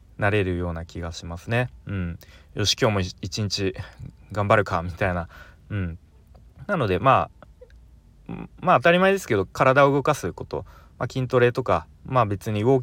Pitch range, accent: 85-115 Hz, native